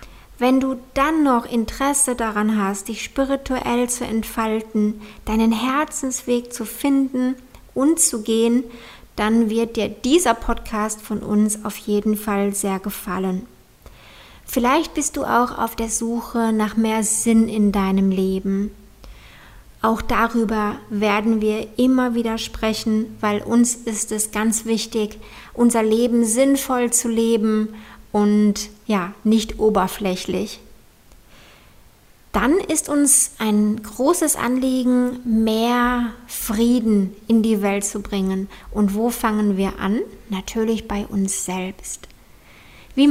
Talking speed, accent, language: 120 wpm, German, German